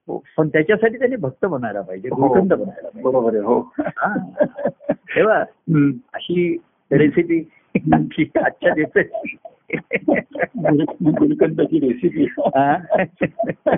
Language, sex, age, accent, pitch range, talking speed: Marathi, male, 60-79, native, 140-185 Hz, 50 wpm